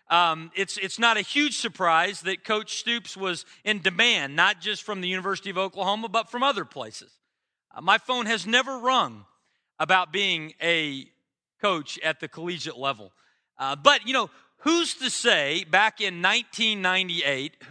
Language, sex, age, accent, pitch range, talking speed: English, male, 40-59, American, 180-235 Hz, 165 wpm